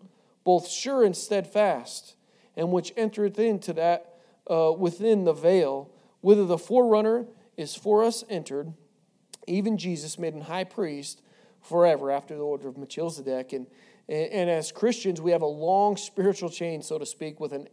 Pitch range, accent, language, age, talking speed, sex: 160-210 Hz, American, English, 40-59, 160 wpm, male